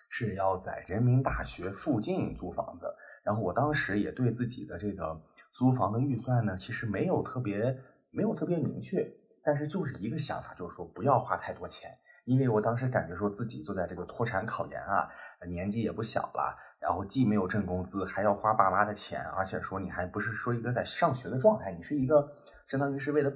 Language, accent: Chinese, native